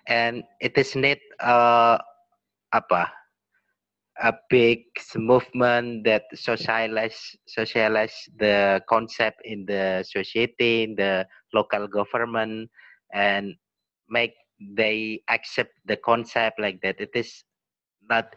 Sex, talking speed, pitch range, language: male, 100 wpm, 110-125 Hz, Indonesian